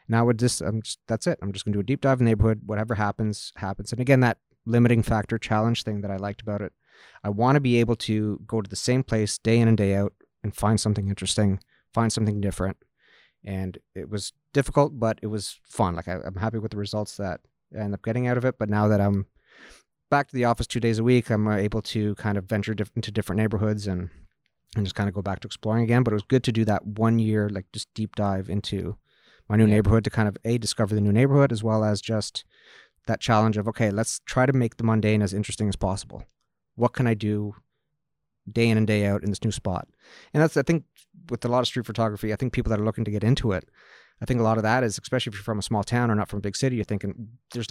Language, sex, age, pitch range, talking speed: English, male, 30-49, 105-120 Hz, 265 wpm